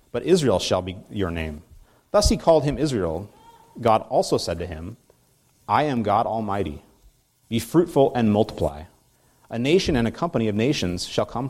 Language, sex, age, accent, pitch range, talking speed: English, male, 30-49, American, 100-145 Hz, 170 wpm